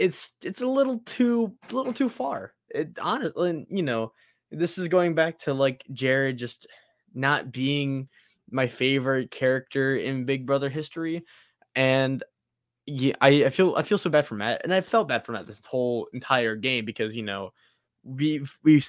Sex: male